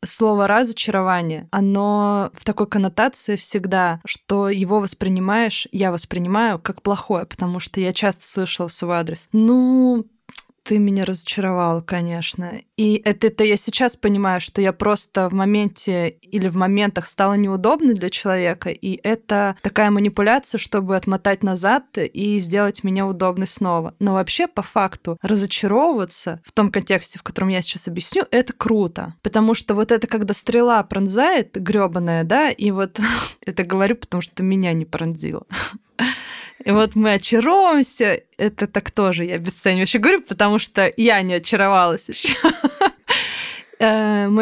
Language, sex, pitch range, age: Russian, female, 185-220 Hz, 20-39